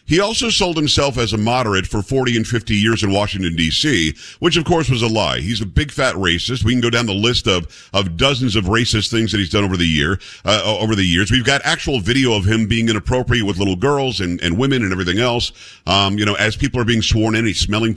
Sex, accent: male, American